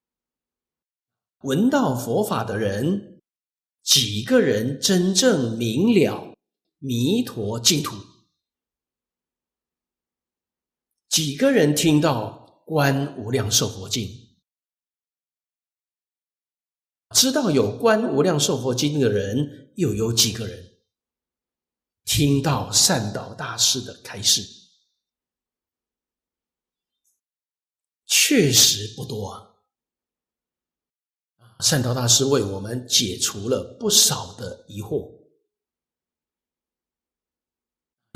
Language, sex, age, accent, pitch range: Chinese, male, 50-69, native, 115-150 Hz